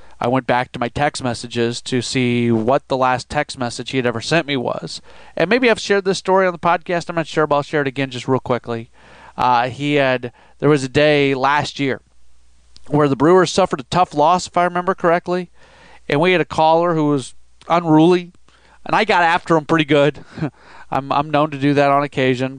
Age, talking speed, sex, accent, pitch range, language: 40-59, 220 wpm, male, American, 125-160 Hz, English